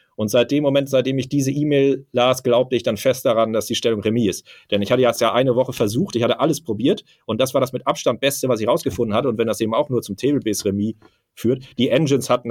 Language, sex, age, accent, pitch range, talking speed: German, male, 40-59, German, 110-130 Hz, 265 wpm